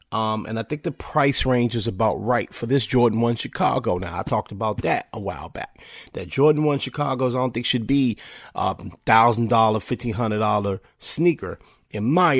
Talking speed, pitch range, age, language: 185 wpm, 105-125 Hz, 30-49, English